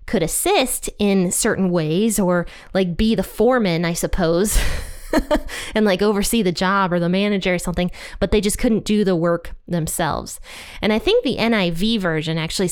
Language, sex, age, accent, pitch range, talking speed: English, female, 20-39, American, 175-225 Hz, 175 wpm